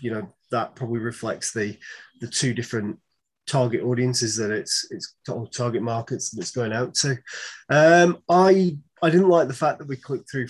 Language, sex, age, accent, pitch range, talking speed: English, male, 30-49, British, 115-145 Hz, 190 wpm